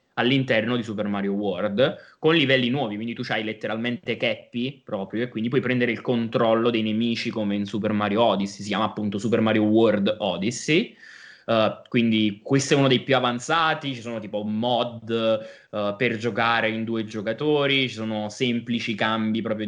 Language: Italian